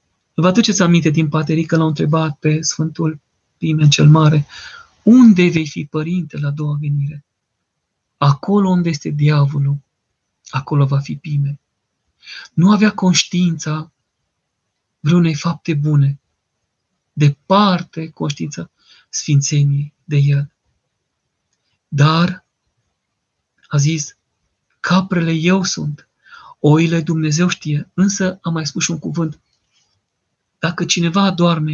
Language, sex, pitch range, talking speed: Romanian, male, 150-180 Hz, 115 wpm